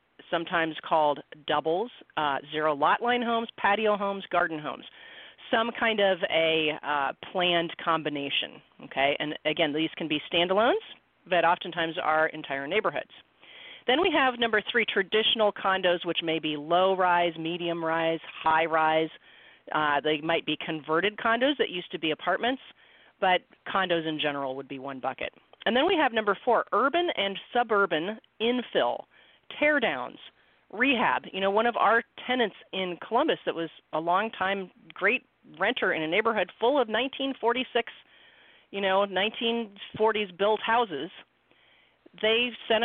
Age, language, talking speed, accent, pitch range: 40-59, English, 145 wpm, American, 165-225 Hz